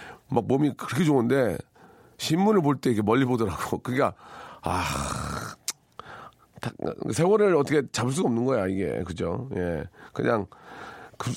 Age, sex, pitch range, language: 40-59, male, 115-150 Hz, Korean